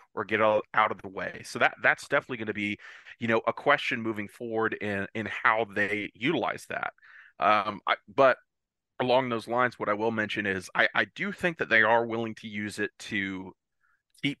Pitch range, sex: 105-115 Hz, male